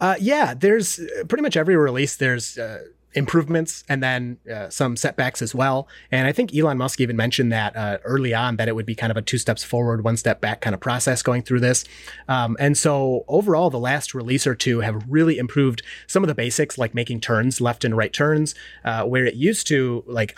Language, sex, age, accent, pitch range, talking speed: English, male, 30-49, American, 115-135 Hz, 225 wpm